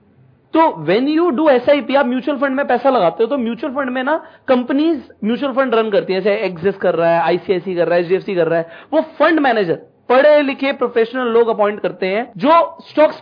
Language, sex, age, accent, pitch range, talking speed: Hindi, male, 40-59, native, 215-280 Hz, 215 wpm